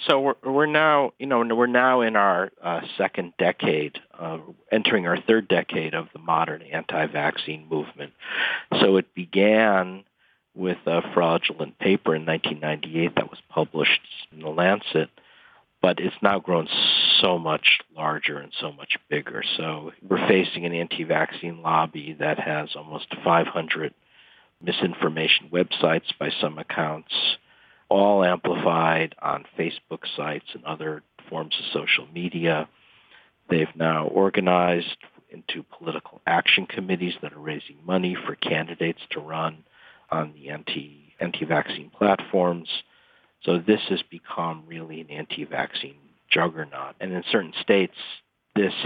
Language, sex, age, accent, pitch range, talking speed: English, male, 50-69, American, 80-95 Hz, 130 wpm